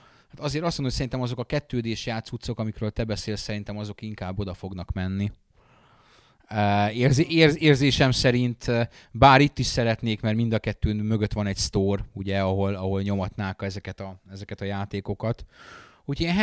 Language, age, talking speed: Hungarian, 30-49, 160 wpm